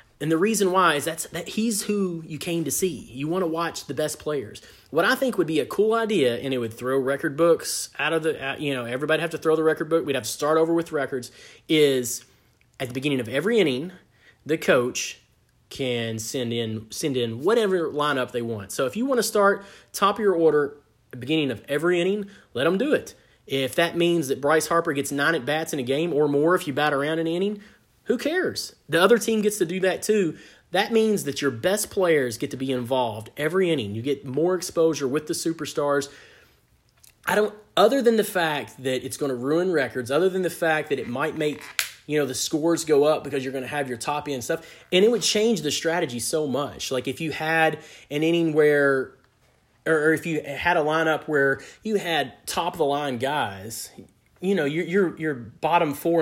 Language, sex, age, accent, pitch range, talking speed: English, male, 30-49, American, 135-175 Hz, 225 wpm